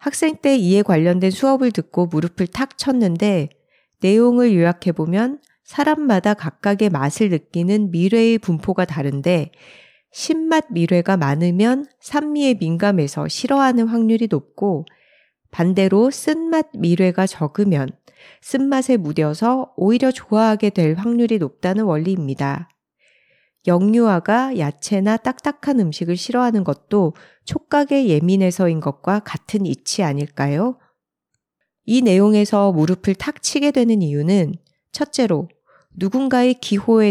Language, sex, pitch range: Korean, female, 170-240 Hz